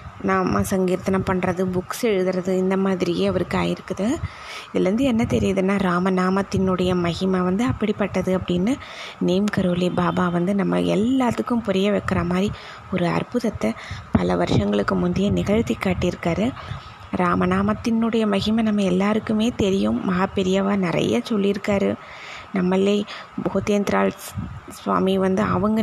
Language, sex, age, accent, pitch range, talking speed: Tamil, female, 20-39, native, 180-205 Hz, 110 wpm